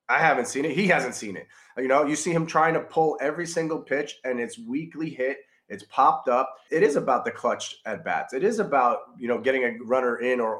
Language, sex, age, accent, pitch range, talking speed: English, male, 30-49, American, 130-175 Hz, 245 wpm